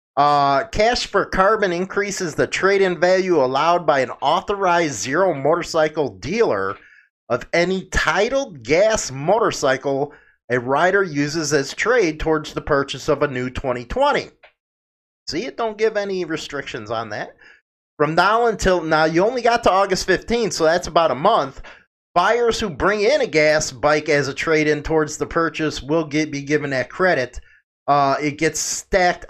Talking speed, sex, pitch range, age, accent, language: 160 wpm, male, 135-180 Hz, 30-49, American, English